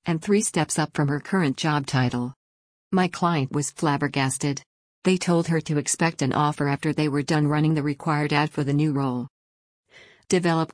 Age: 50-69